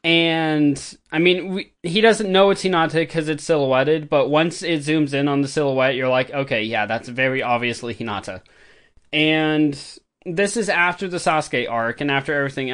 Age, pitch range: 20-39, 140-175 Hz